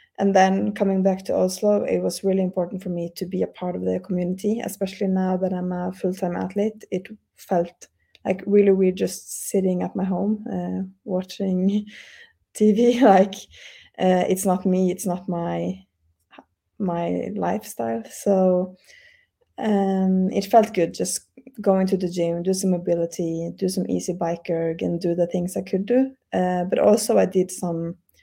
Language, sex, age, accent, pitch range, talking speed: English, female, 20-39, Norwegian, 180-200 Hz, 170 wpm